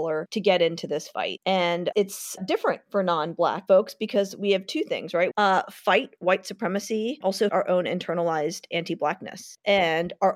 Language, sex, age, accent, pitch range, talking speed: English, female, 40-59, American, 170-200 Hz, 160 wpm